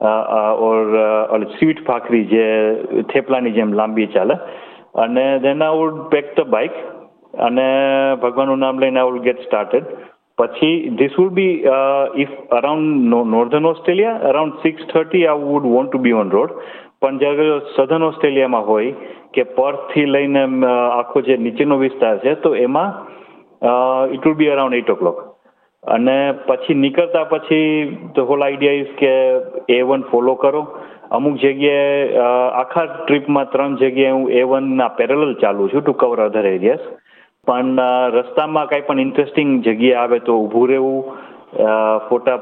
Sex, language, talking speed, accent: male, Gujarati, 145 wpm, native